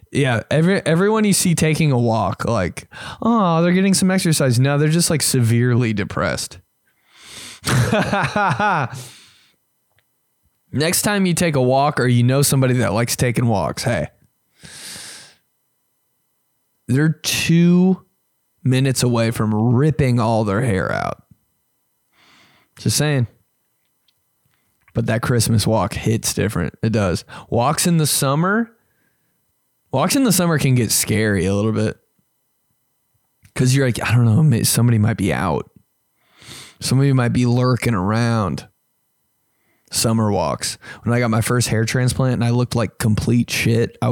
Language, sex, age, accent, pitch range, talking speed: English, male, 20-39, American, 110-140 Hz, 135 wpm